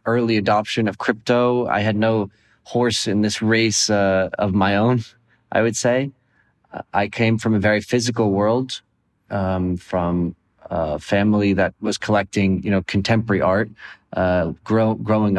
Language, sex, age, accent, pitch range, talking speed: English, male, 30-49, American, 100-115 Hz, 150 wpm